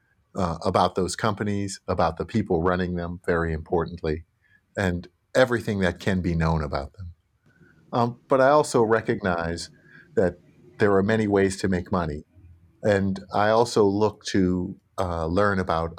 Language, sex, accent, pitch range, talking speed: English, male, American, 85-105 Hz, 150 wpm